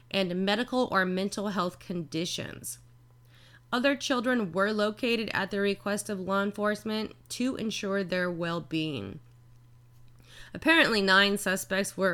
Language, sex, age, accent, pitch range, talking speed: English, female, 20-39, American, 165-205 Hz, 120 wpm